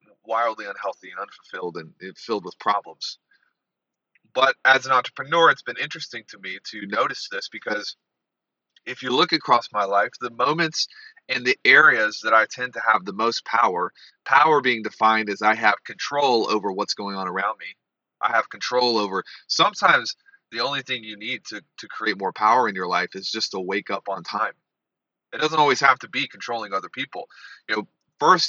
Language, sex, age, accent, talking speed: English, male, 30-49, American, 190 wpm